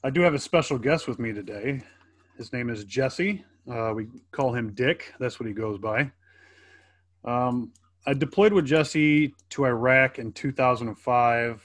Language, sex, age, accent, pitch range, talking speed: English, male, 30-49, American, 100-125 Hz, 165 wpm